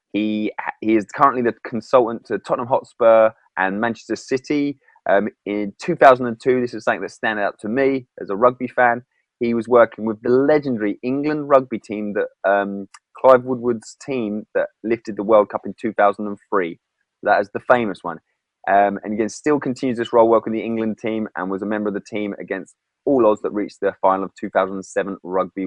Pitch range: 105-130 Hz